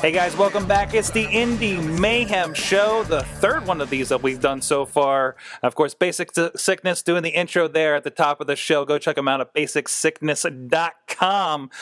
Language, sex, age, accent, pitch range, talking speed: English, male, 30-49, American, 145-185 Hz, 205 wpm